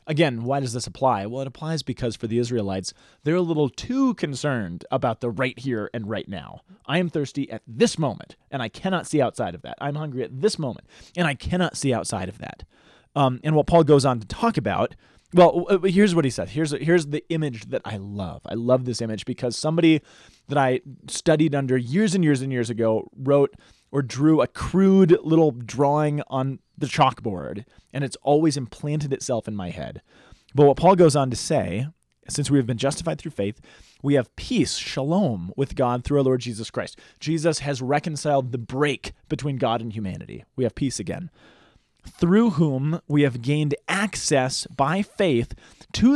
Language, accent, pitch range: English, American, 125-165 Hz